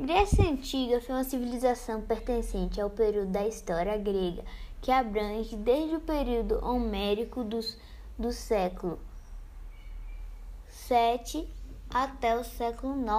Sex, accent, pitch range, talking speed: female, Brazilian, 200-255 Hz, 110 wpm